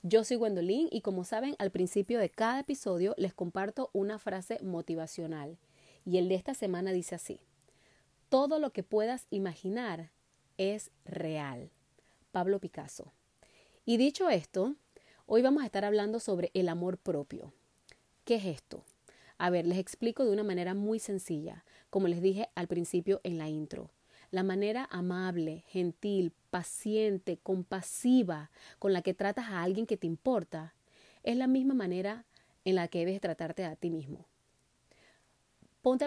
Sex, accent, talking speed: female, American, 155 wpm